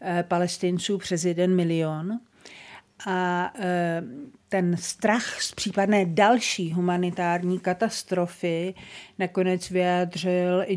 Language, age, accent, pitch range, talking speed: Czech, 50-69, native, 175-205 Hz, 85 wpm